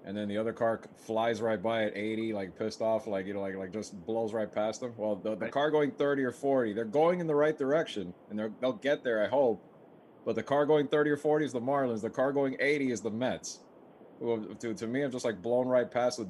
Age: 20-39